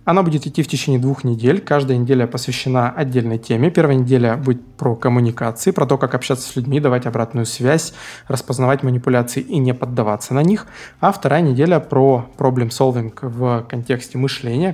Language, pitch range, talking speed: Russian, 120-140 Hz, 165 wpm